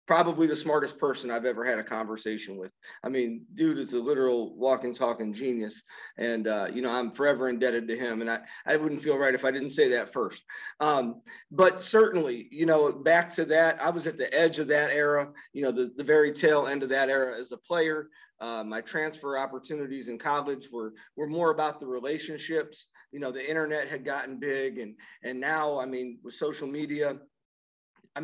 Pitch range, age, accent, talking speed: 125-155 Hz, 40-59, American, 205 wpm